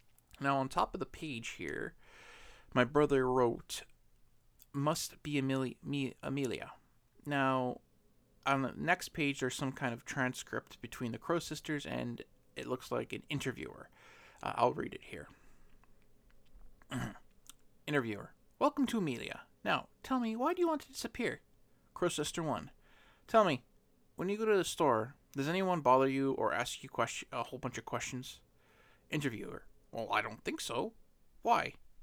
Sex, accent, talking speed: male, American, 150 wpm